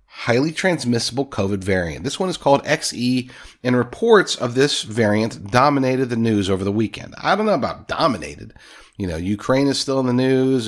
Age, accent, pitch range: 40-59, American, 110-150 Hz